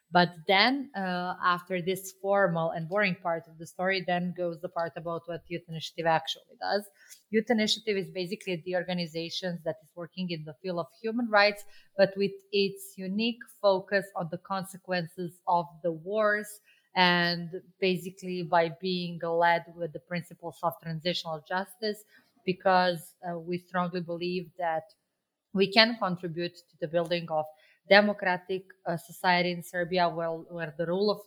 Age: 30-49